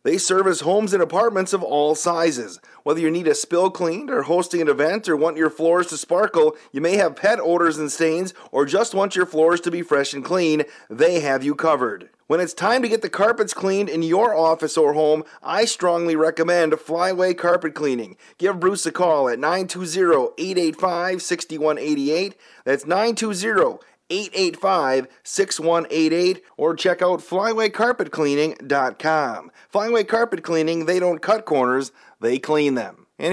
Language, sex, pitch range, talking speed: English, male, 155-190 Hz, 160 wpm